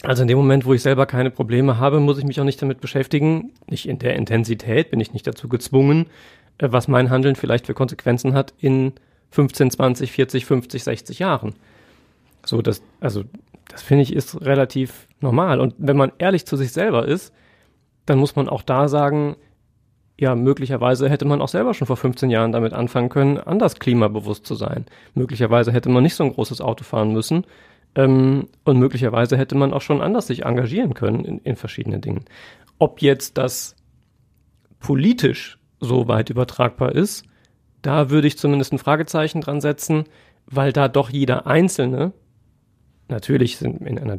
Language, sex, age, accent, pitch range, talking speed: German, male, 30-49, German, 125-140 Hz, 175 wpm